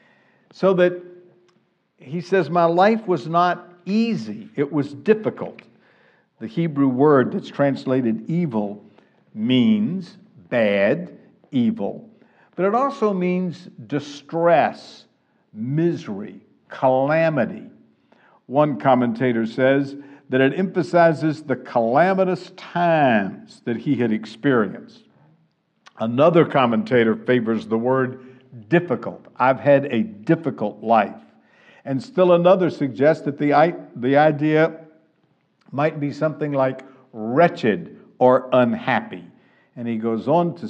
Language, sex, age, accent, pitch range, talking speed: English, male, 60-79, American, 130-175 Hz, 105 wpm